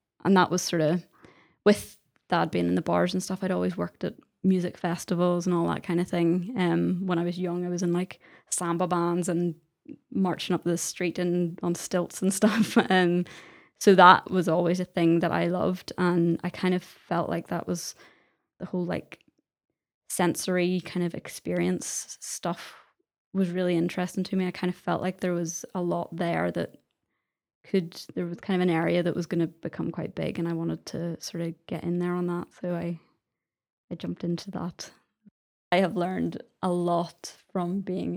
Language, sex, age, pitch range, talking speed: English, female, 20-39, 170-185 Hz, 200 wpm